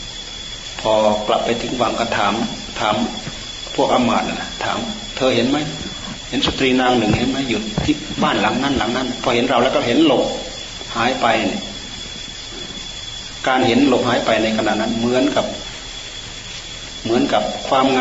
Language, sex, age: Thai, male, 30-49